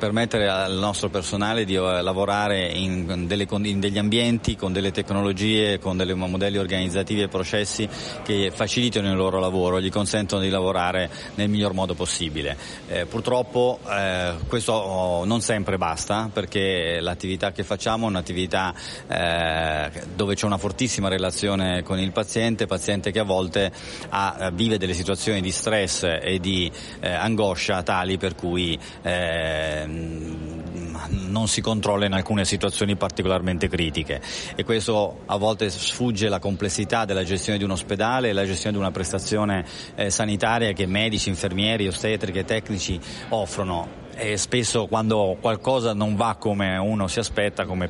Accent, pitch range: native, 95-110 Hz